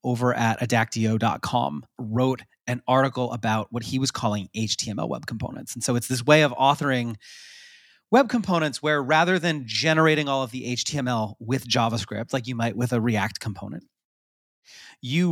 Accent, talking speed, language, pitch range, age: American, 160 wpm, English, 115-150 Hz, 30-49